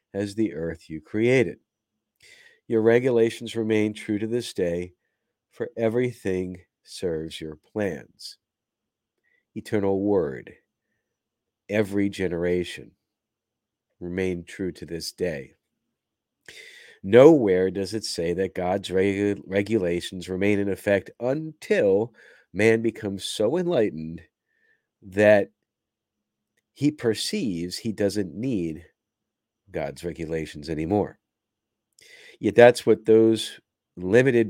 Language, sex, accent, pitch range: English, male, American, 90-110 Hz